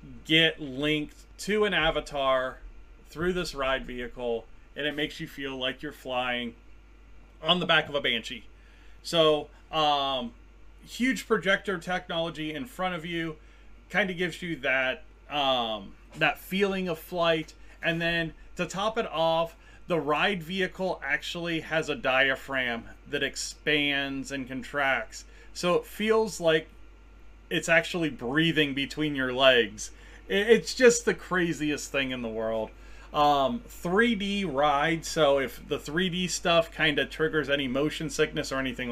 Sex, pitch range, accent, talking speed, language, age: male, 130-170 Hz, American, 145 wpm, English, 30-49